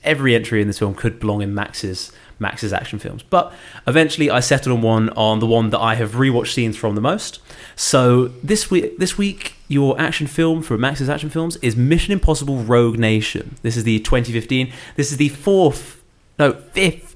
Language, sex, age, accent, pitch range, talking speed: English, male, 20-39, British, 115-145 Hz, 195 wpm